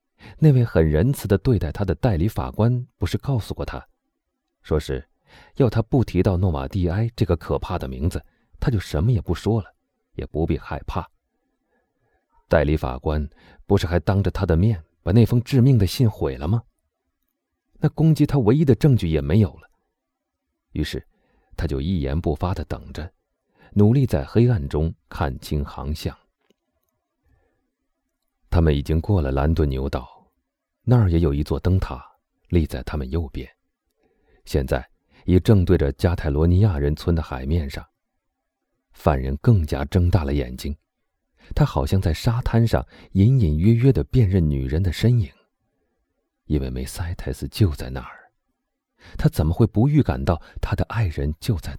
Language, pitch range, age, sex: Chinese, 75-105 Hz, 30-49, male